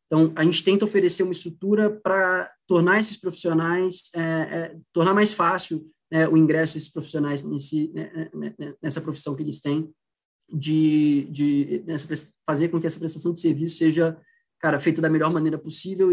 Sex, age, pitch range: male, 20-39, 150-170 Hz